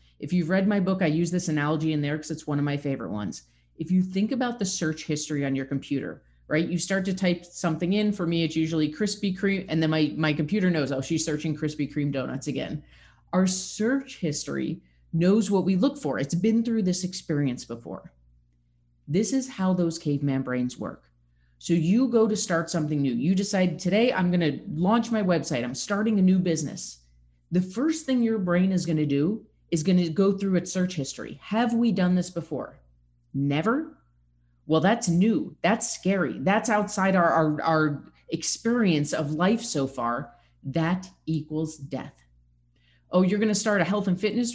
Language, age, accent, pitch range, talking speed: English, 30-49, American, 145-195 Hz, 195 wpm